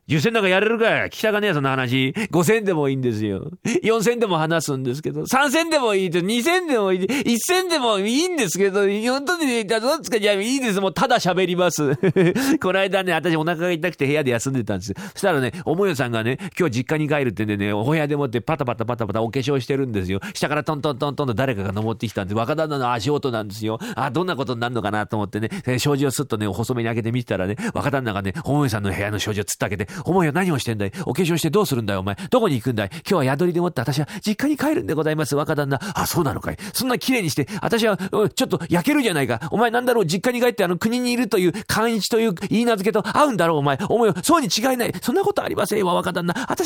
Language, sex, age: Japanese, male, 40-59